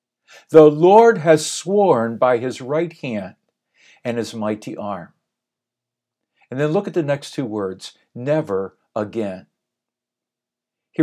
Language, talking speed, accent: English, 125 wpm, American